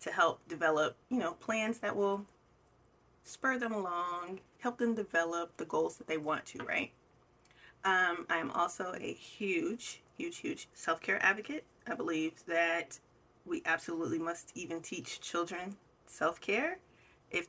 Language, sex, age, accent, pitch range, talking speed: English, female, 30-49, American, 160-230 Hz, 140 wpm